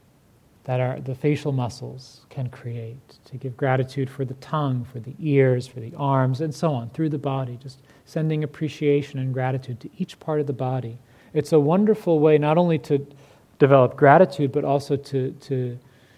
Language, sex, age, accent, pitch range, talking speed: English, male, 40-59, American, 125-150 Hz, 180 wpm